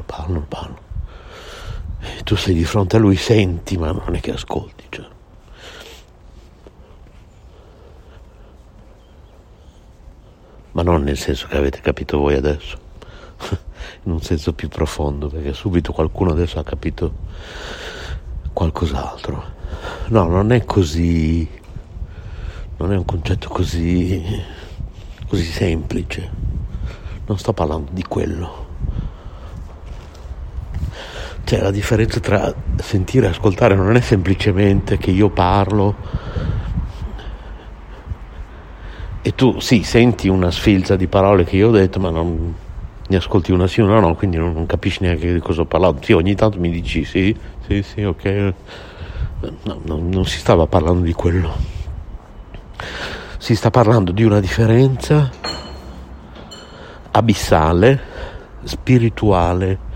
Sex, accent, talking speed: male, native, 120 wpm